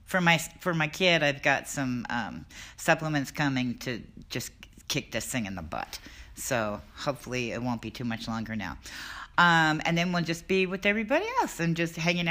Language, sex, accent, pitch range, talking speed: English, female, American, 150-210 Hz, 195 wpm